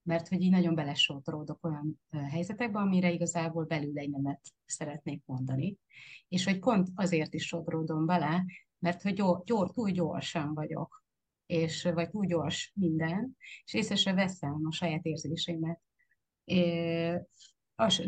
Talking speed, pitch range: 145 wpm, 165-185 Hz